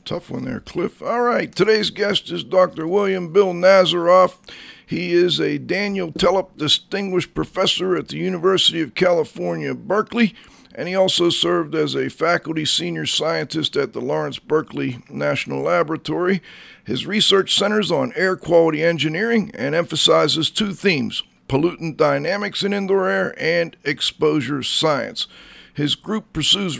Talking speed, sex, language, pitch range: 140 wpm, male, English, 155-190 Hz